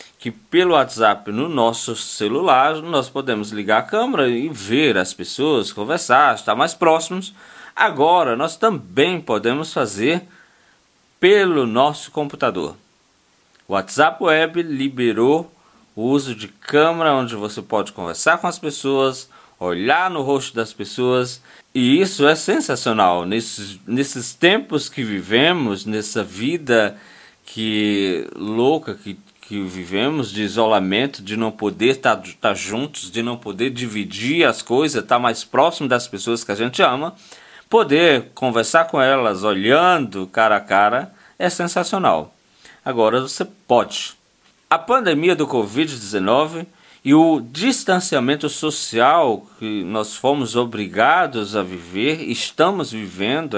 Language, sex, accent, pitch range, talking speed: Portuguese, male, Brazilian, 110-155 Hz, 125 wpm